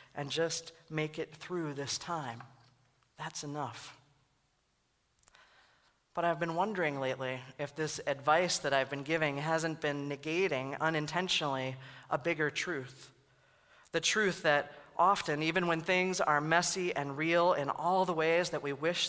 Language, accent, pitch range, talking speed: English, American, 145-175 Hz, 145 wpm